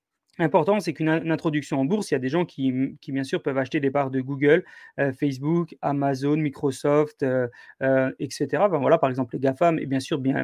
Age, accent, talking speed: 30-49, French, 220 wpm